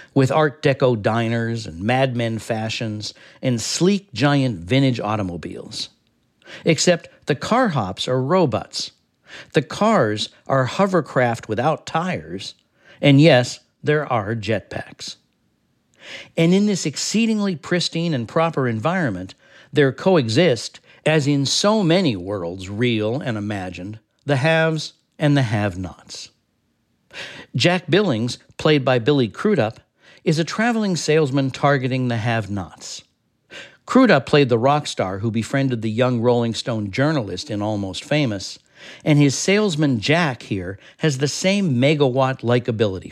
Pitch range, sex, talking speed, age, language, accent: 115-160 Hz, male, 125 wpm, 60-79, English, American